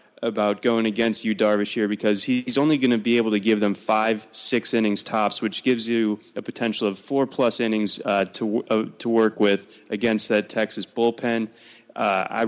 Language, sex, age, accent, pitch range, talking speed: English, male, 20-39, American, 105-125 Hz, 195 wpm